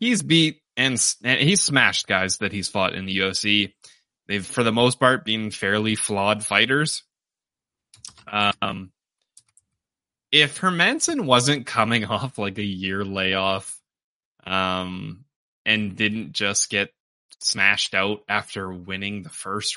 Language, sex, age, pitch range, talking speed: English, male, 20-39, 95-120 Hz, 130 wpm